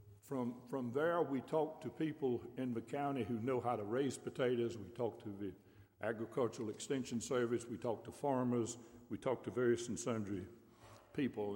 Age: 60-79